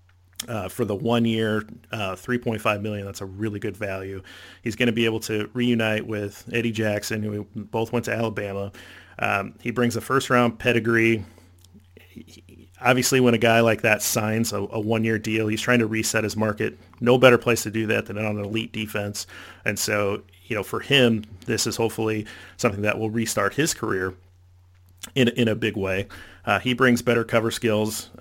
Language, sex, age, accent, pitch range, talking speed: English, male, 40-59, American, 100-115 Hz, 190 wpm